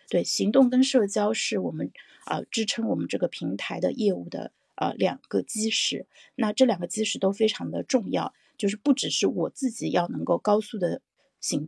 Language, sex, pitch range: Chinese, female, 195-245 Hz